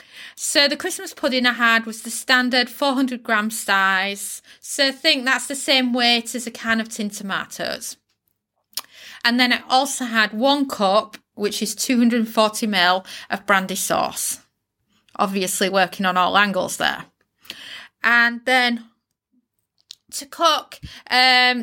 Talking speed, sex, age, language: 135 wpm, female, 30-49, English